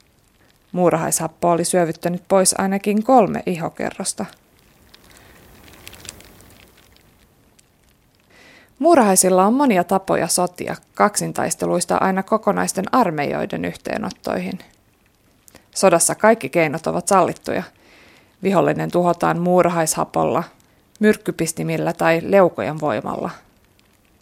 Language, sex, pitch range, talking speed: Finnish, female, 165-210 Hz, 70 wpm